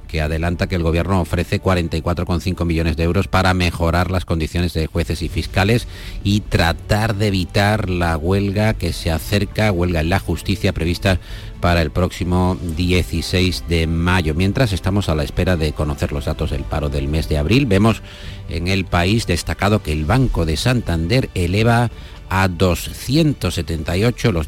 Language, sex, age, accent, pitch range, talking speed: Spanish, male, 50-69, Spanish, 80-95 Hz, 165 wpm